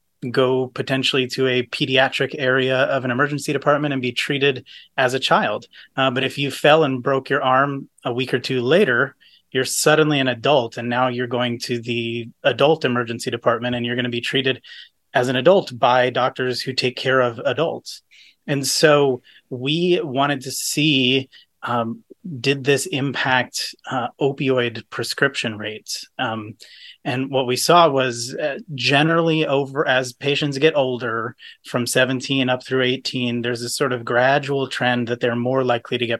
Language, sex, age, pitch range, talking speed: English, male, 30-49, 120-140 Hz, 170 wpm